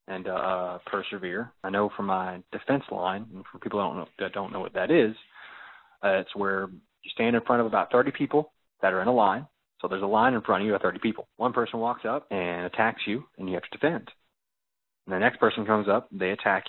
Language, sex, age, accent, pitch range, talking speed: English, male, 30-49, American, 95-120 Hz, 245 wpm